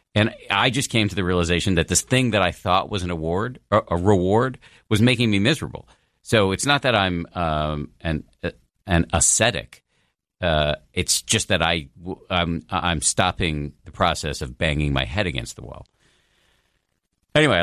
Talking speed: 165 wpm